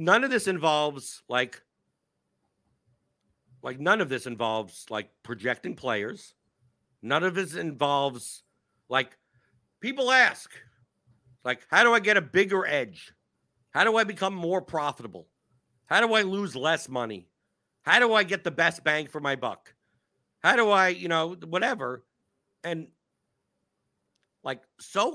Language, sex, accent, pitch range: English, male, American, 125-190 Hz